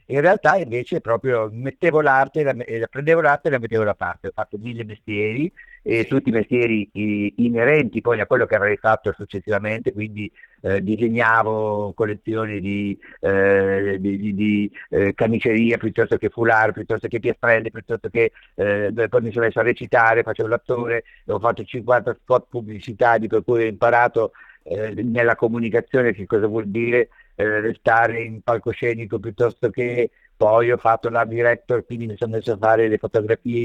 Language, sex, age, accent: Italian, male, 50-69, native